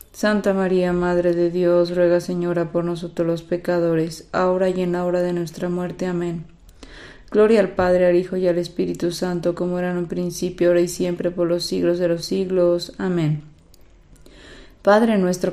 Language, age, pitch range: Spanish, 20-39, 175-185 Hz